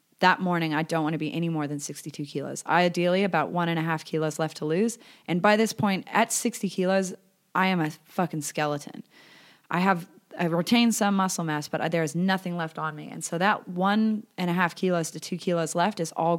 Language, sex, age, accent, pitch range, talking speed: English, female, 30-49, American, 155-185 Hz, 230 wpm